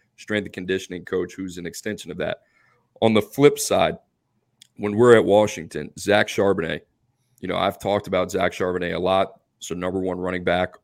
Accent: American